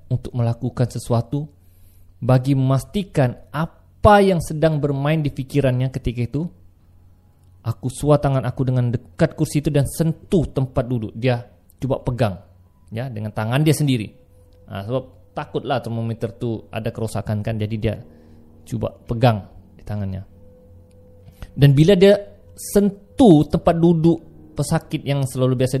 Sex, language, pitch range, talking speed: male, Malay, 95-150 Hz, 135 wpm